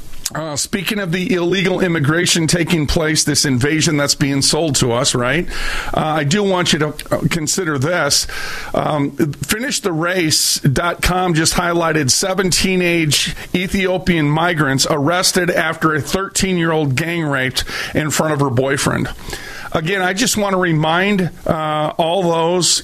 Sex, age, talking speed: male, 40-59, 135 wpm